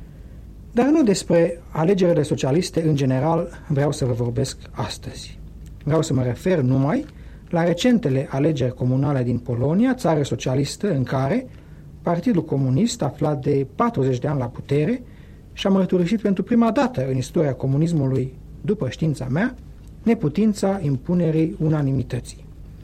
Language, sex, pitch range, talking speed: Romanian, male, 130-175 Hz, 130 wpm